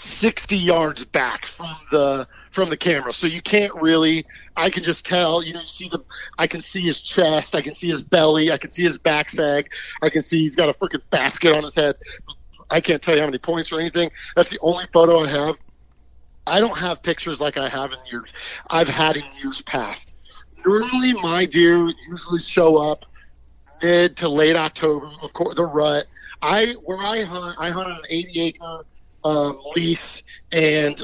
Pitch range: 150-175 Hz